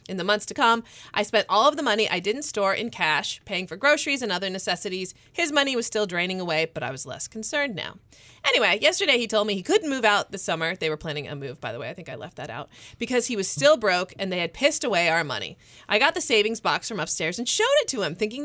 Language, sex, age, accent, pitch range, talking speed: English, female, 30-49, American, 170-245 Hz, 275 wpm